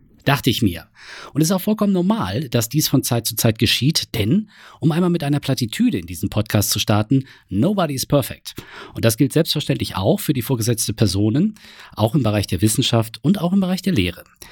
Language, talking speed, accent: German, 205 wpm, German